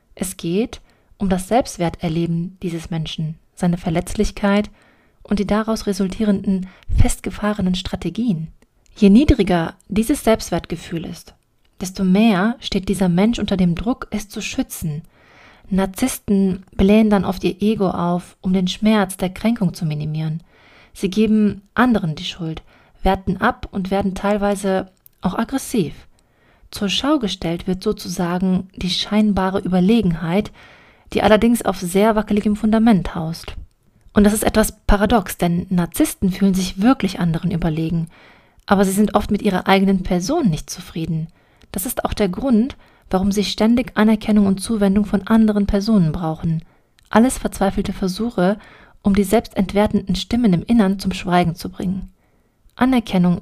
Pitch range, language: 180-215 Hz, German